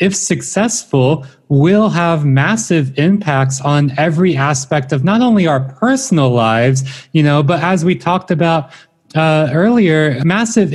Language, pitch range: English, 135-160 Hz